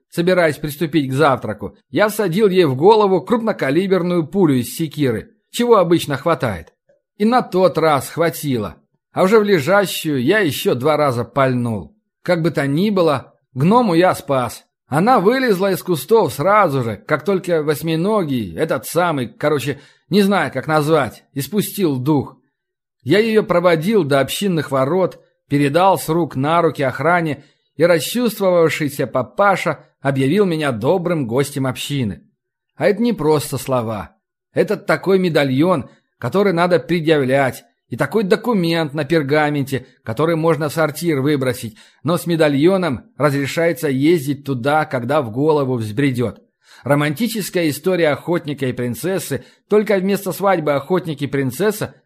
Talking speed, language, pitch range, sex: 135 wpm, Russian, 135-185 Hz, male